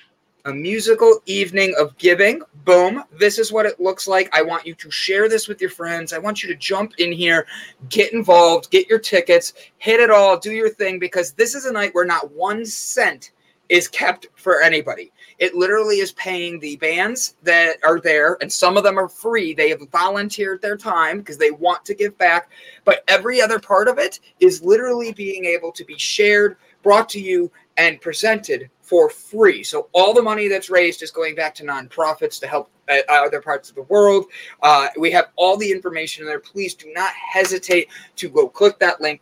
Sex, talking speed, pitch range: male, 205 wpm, 170-230 Hz